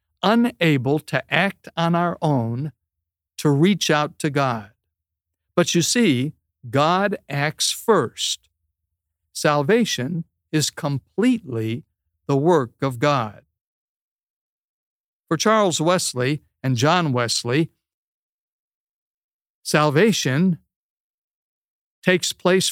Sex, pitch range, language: male, 125-175 Hz, English